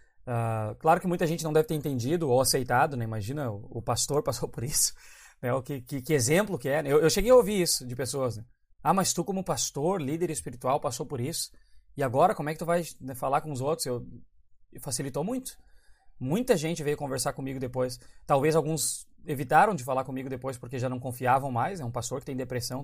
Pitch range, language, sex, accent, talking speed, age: 130-160 Hz, Portuguese, male, Brazilian, 230 wpm, 20-39